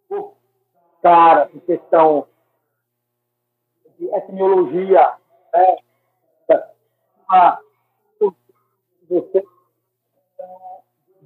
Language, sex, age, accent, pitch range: Portuguese, male, 60-79, Brazilian, 120-195 Hz